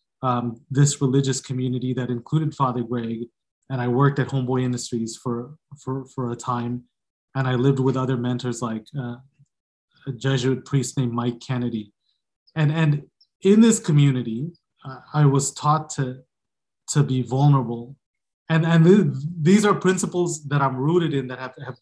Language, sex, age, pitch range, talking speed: English, male, 30-49, 125-150 Hz, 160 wpm